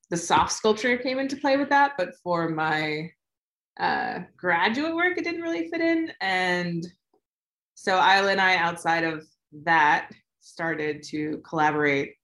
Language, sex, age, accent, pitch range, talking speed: English, female, 20-39, American, 155-190 Hz, 145 wpm